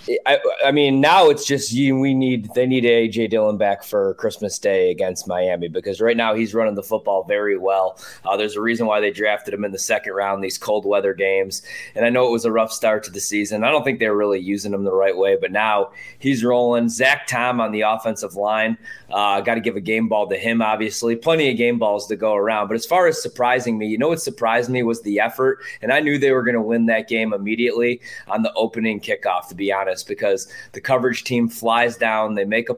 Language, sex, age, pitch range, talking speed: English, male, 20-39, 105-125 Hz, 245 wpm